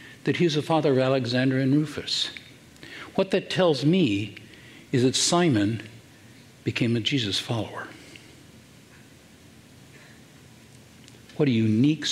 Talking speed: 110 wpm